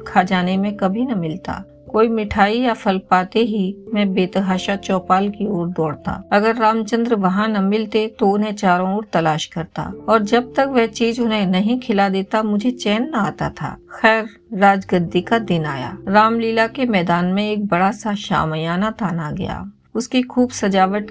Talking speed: 175 wpm